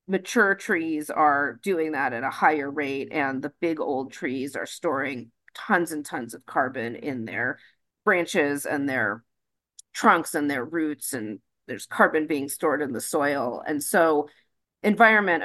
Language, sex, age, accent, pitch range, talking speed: English, female, 40-59, American, 145-185 Hz, 160 wpm